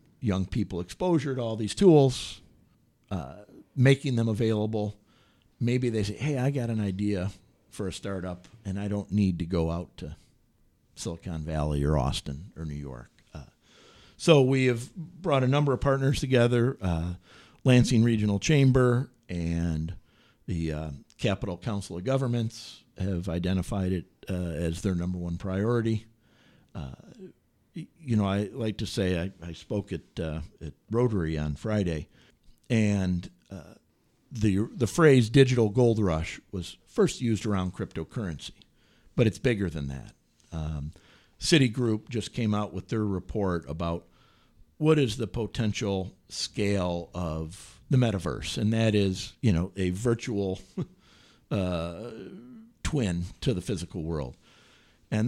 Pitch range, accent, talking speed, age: 90-120 Hz, American, 140 wpm, 50-69